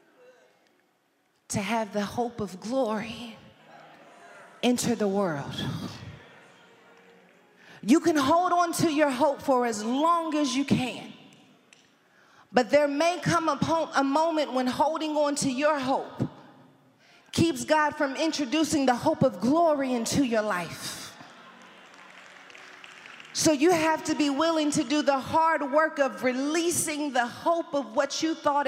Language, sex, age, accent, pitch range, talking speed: English, female, 40-59, American, 275-340 Hz, 140 wpm